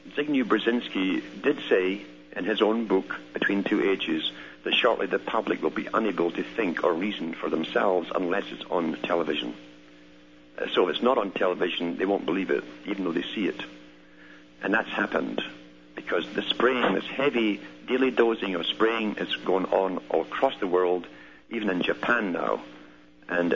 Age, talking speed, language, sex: 60-79, 170 wpm, English, male